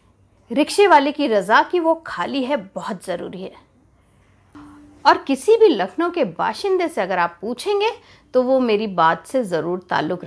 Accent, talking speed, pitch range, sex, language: native, 165 wpm, 200-305 Hz, female, Hindi